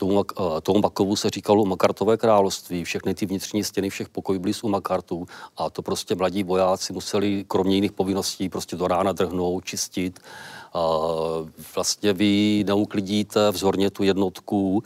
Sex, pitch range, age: male, 95-105 Hz, 40-59